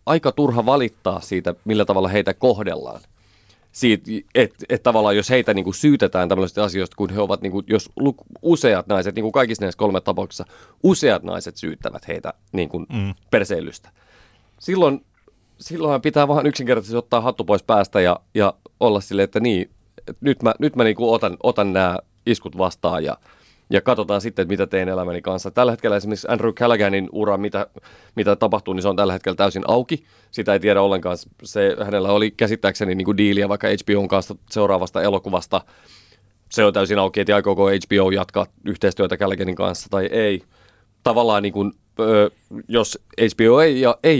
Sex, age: male, 30-49